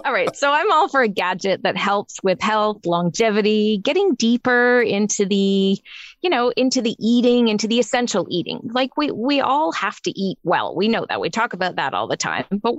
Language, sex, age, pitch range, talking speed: English, female, 20-39, 180-240 Hz, 210 wpm